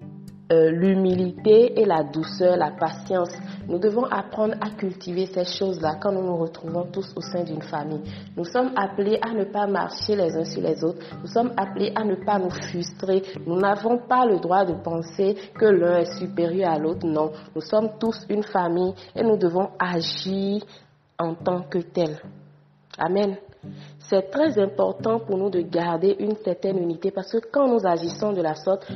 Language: French